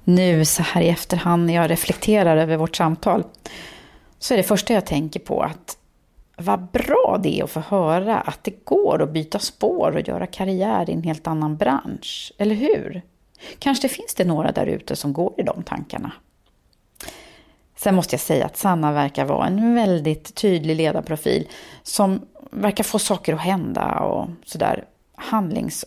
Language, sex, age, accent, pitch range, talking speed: Swedish, female, 30-49, native, 160-220 Hz, 175 wpm